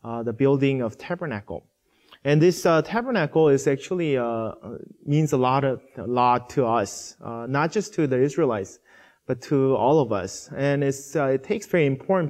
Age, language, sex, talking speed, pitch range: 20-39, English, male, 190 wpm, 130-165 Hz